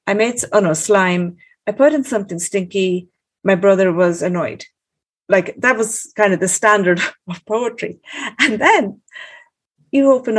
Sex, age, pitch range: female, 50-69, 175-215 Hz